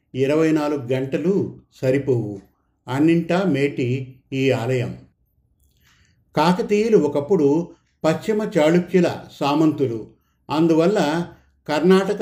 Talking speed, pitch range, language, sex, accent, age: 75 wpm, 140-175 Hz, Telugu, male, native, 50-69